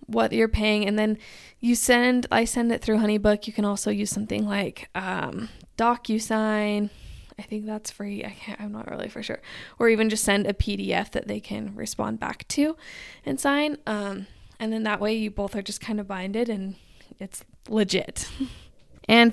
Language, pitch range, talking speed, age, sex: English, 205-240 Hz, 190 wpm, 10-29, female